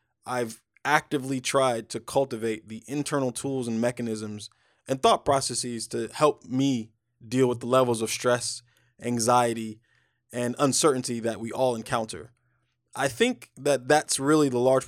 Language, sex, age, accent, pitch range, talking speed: English, male, 20-39, American, 115-145 Hz, 145 wpm